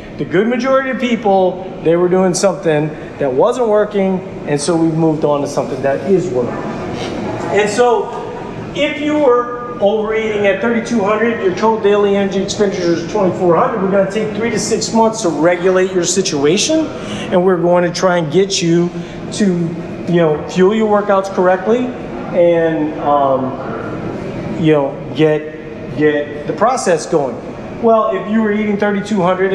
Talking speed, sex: 160 wpm, male